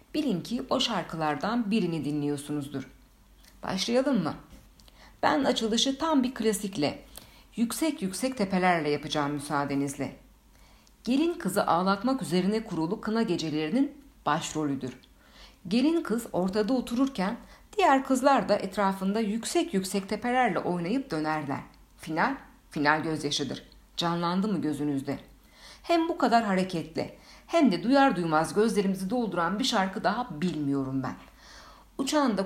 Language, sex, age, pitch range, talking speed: Turkish, female, 60-79, 160-245 Hz, 115 wpm